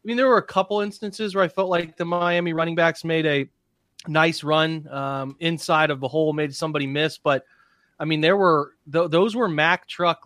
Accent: American